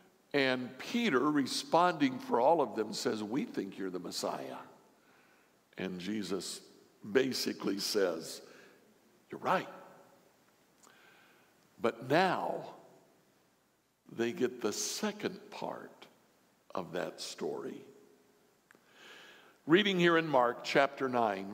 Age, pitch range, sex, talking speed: 60-79, 115-145 Hz, male, 100 wpm